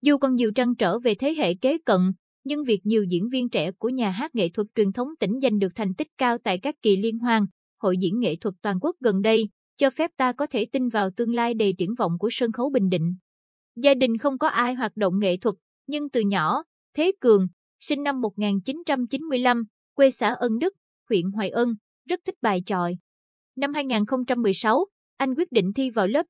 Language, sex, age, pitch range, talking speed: Vietnamese, female, 20-39, 205-260 Hz, 215 wpm